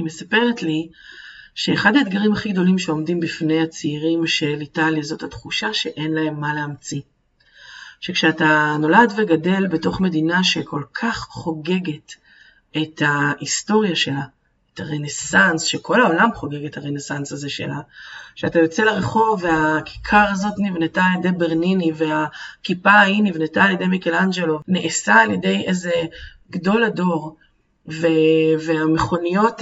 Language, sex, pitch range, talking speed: Hebrew, female, 150-180 Hz, 120 wpm